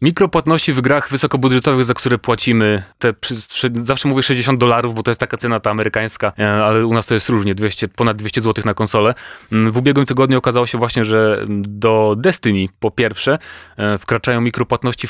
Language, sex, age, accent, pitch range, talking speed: Polish, male, 30-49, native, 110-135 Hz, 175 wpm